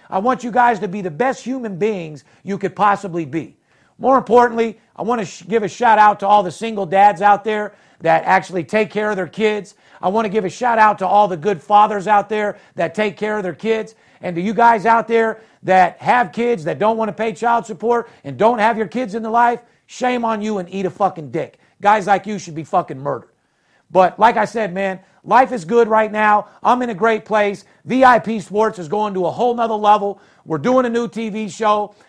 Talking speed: 235 wpm